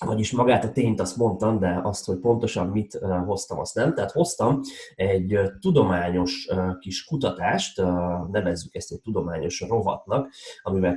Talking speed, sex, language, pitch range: 140 wpm, male, Hungarian, 95-110 Hz